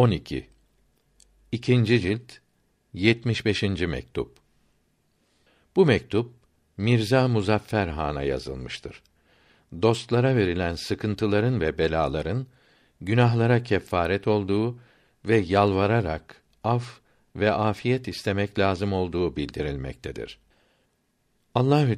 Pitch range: 85-115 Hz